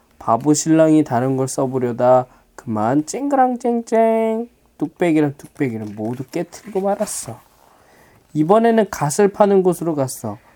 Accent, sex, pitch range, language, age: native, male, 125-185 Hz, Korean, 20-39